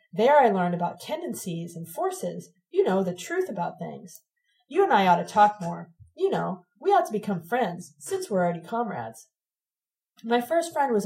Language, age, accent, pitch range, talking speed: English, 30-49, American, 180-230 Hz, 190 wpm